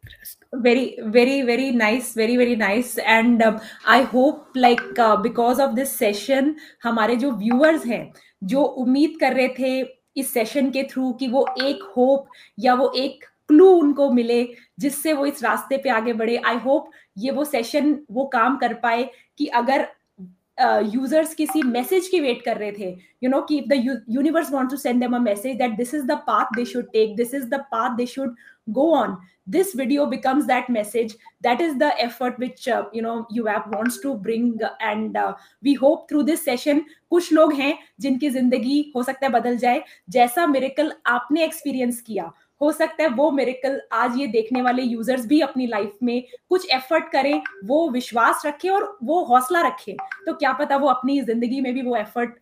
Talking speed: 165 wpm